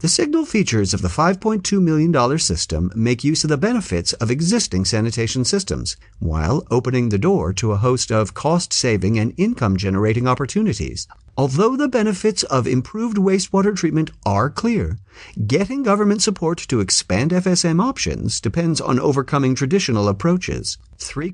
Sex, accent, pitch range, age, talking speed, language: male, American, 110-180 Hz, 50-69, 145 wpm, English